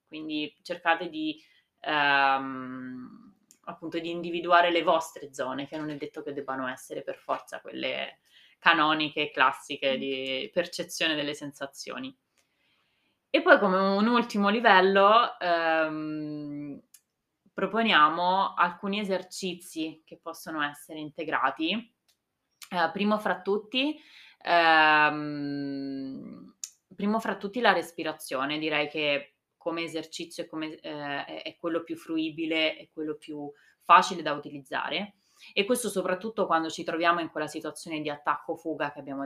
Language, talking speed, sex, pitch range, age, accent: Italian, 120 wpm, female, 150-185 Hz, 20-39, native